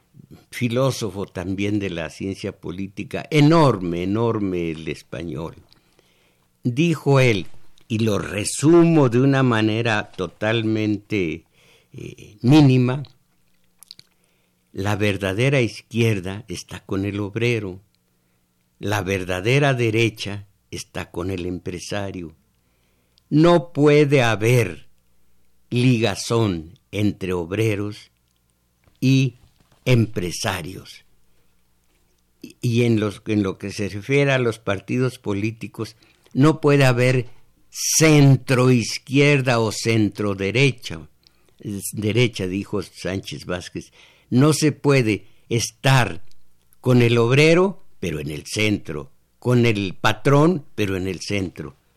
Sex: male